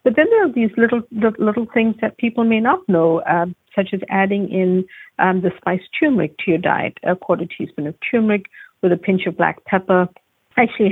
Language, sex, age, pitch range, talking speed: English, female, 50-69, 180-215 Hz, 205 wpm